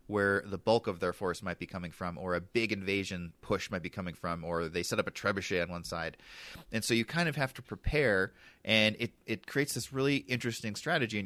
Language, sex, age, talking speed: English, male, 30-49, 240 wpm